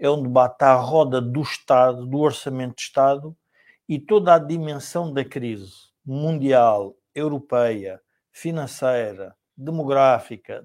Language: Portuguese